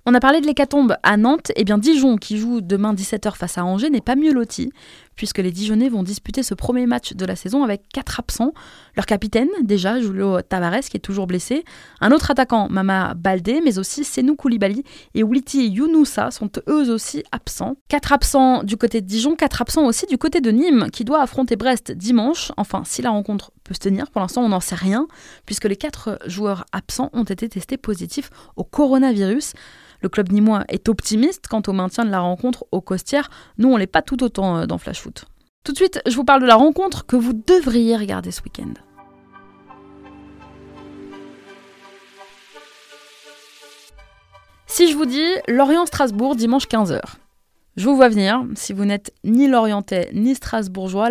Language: French